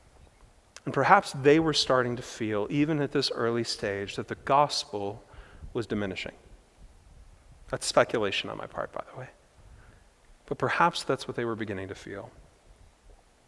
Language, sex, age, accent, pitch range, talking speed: English, male, 40-59, American, 105-130 Hz, 150 wpm